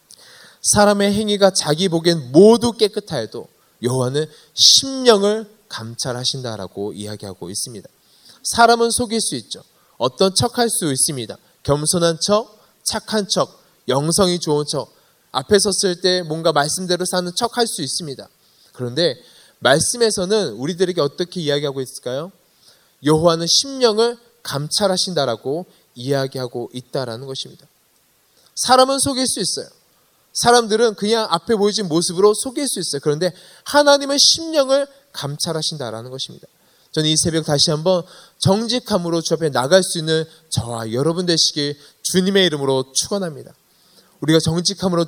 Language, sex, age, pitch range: Korean, male, 20-39, 145-210 Hz